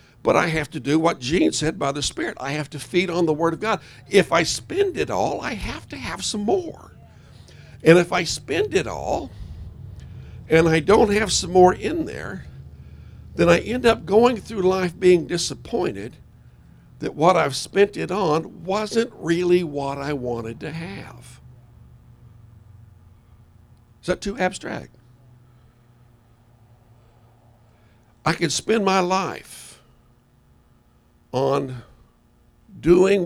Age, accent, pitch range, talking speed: 60-79, American, 120-170 Hz, 140 wpm